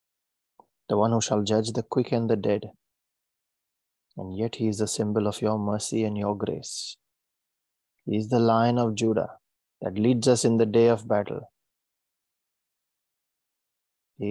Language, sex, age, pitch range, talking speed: English, male, 20-39, 100-115 Hz, 155 wpm